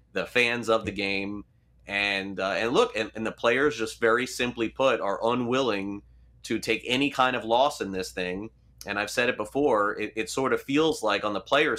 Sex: male